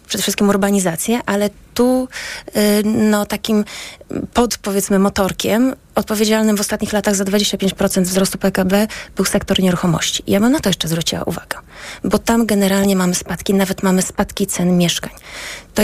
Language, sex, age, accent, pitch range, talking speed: Polish, female, 30-49, native, 195-230 Hz, 155 wpm